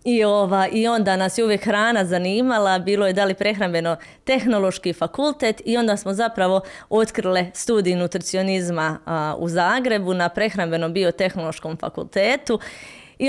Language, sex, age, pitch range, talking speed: Croatian, female, 20-39, 175-220 Hz, 140 wpm